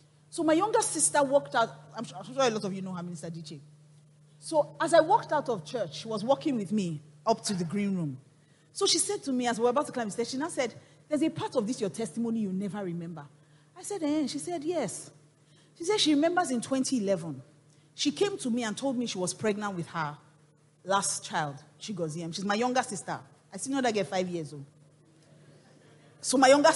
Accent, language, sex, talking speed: Nigerian, English, female, 235 wpm